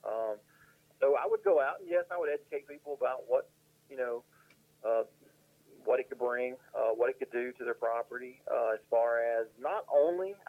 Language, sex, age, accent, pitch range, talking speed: English, male, 40-59, American, 115-150 Hz, 200 wpm